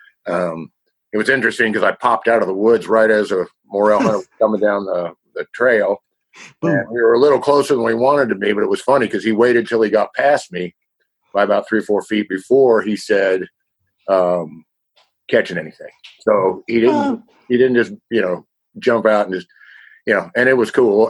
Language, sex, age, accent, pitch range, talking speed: English, male, 50-69, American, 105-125 Hz, 210 wpm